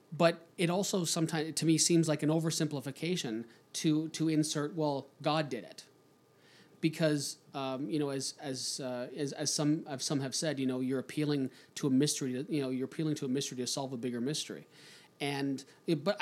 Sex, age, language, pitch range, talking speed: male, 30-49, English, 130-160 Hz, 200 wpm